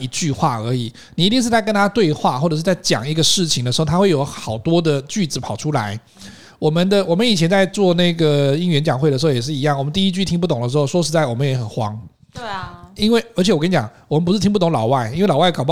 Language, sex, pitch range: Chinese, male, 135-190 Hz